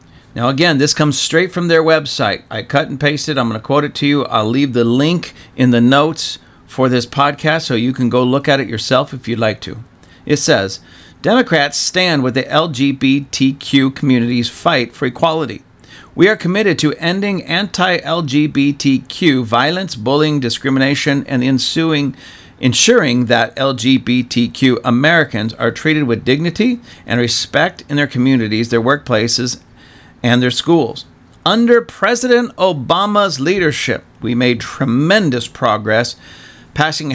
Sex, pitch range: male, 120-155 Hz